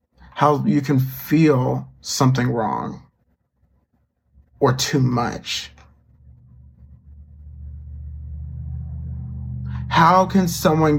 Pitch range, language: 110-150 Hz, English